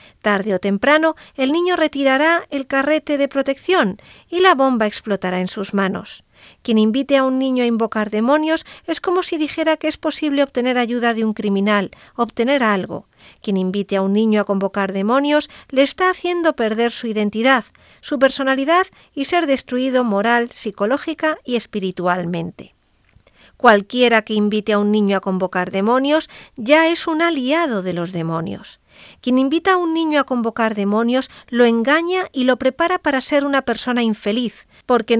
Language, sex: Spanish, female